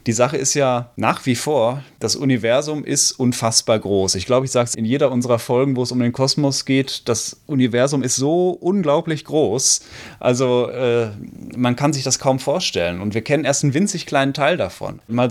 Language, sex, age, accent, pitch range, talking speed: German, male, 30-49, German, 115-145 Hz, 200 wpm